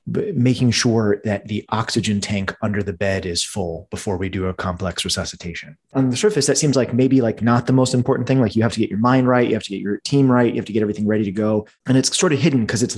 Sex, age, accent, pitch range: male, 30-49, American, 100-125 Hz